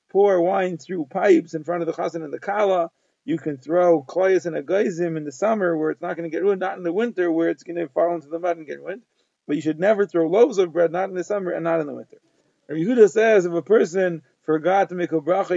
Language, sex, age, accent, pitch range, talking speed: English, male, 40-59, American, 170-190 Hz, 275 wpm